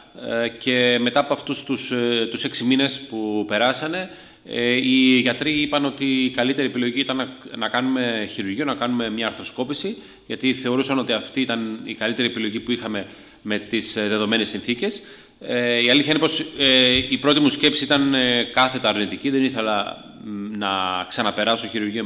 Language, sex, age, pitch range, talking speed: Greek, male, 30-49, 110-135 Hz, 150 wpm